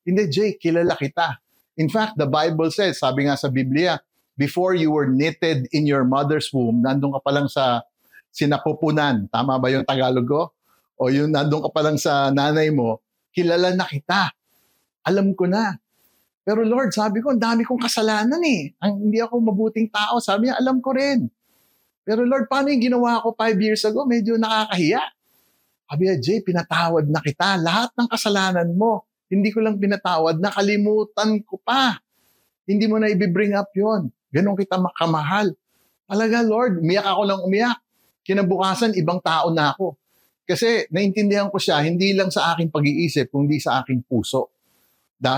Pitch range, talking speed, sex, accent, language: 150-215 Hz, 170 wpm, male, native, Filipino